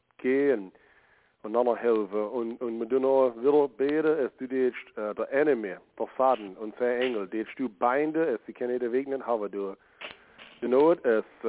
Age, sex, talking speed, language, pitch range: 40-59, male, 180 wpm, English, 105-125 Hz